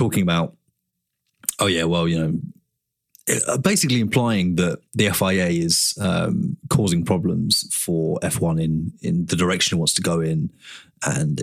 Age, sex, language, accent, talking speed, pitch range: 30-49, male, English, British, 145 wpm, 85-105 Hz